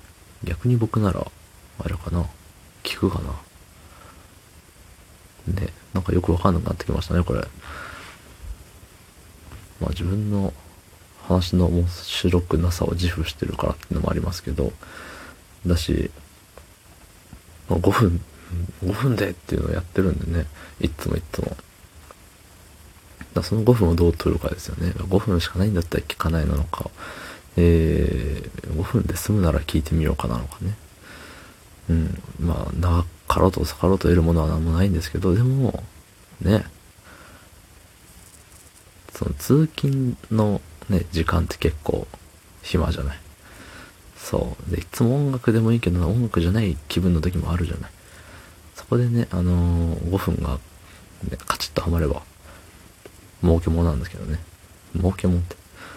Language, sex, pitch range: Japanese, male, 85-95 Hz